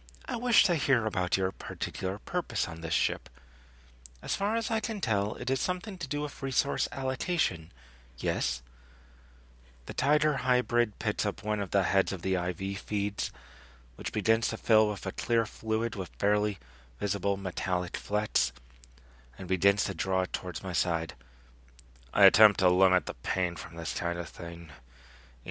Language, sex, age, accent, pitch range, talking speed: English, male, 30-49, American, 65-105 Hz, 170 wpm